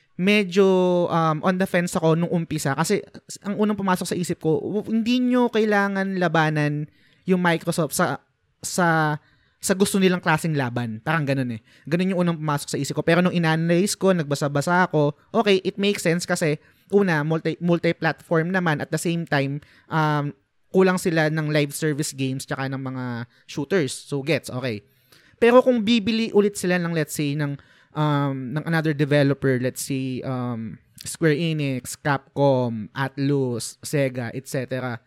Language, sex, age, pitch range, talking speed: Filipino, male, 20-39, 140-195 Hz, 160 wpm